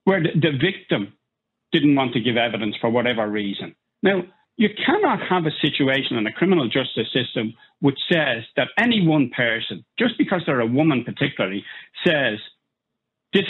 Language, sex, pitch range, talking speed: English, male, 125-190 Hz, 160 wpm